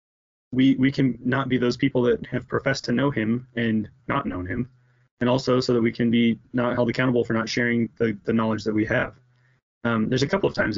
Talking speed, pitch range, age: 235 wpm, 115-130 Hz, 20-39